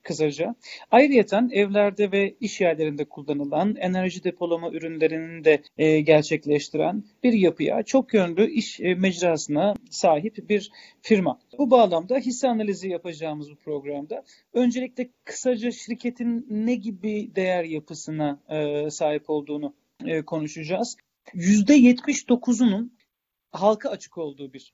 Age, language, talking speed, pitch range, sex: 40-59, Turkish, 100 wpm, 170-230 Hz, male